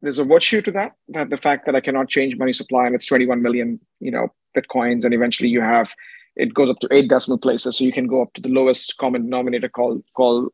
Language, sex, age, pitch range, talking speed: English, male, 30-49, 125-150 Hz, 250 wpm